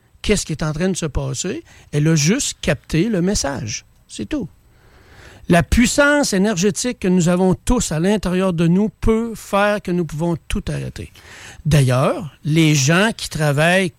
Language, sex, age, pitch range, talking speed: French, male, 60-79, 145-195 Hz, 165 wpm